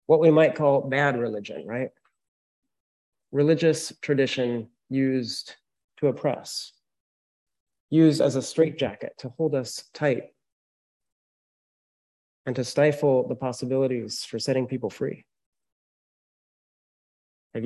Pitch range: 120-150 Hz